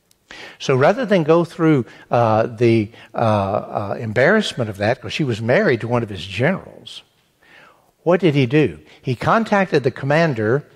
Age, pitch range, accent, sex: 60-79, 120-155 Hz, American, male